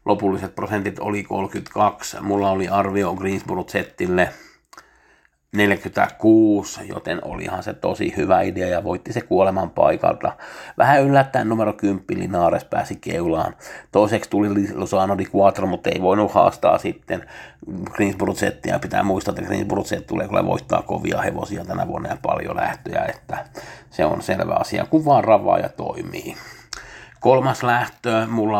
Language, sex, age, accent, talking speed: Finnish, male, 50-69, native, 135 wpm